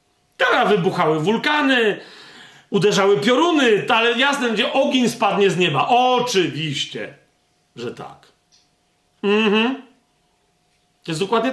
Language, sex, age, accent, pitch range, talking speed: Polish, male, 40-59, native, 155-210 Hz, 95 wpm